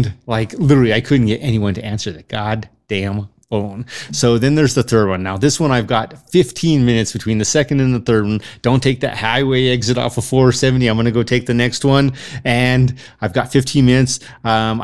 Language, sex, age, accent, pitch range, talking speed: English, male, 30-49, American, 115-145 Hz, 215 wpm